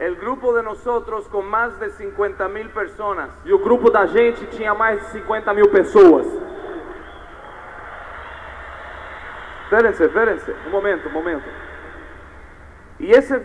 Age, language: 40-59, Portuguese